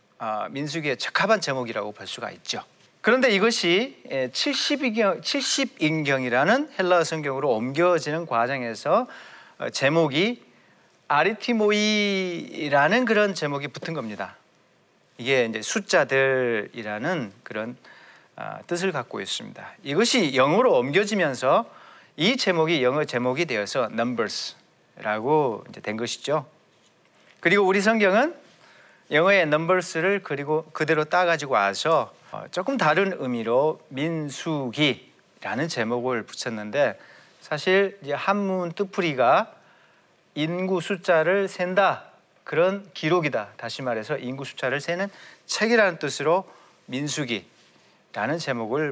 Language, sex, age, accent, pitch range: Korean, male, 40-59, native, 135-195 Hz